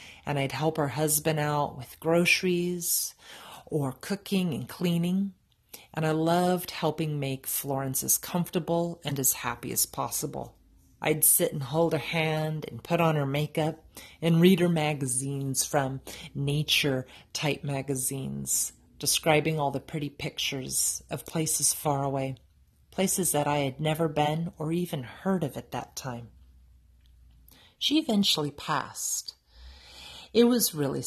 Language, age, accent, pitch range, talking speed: English, 40-59, American, 135-170 Hz, 135 wpm